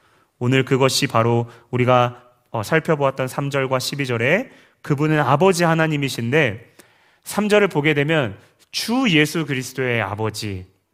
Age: 30-49